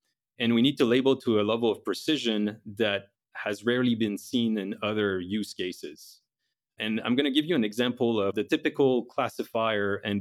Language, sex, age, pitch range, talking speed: English, male, 30-49, 105-125 Hz, 190 wpm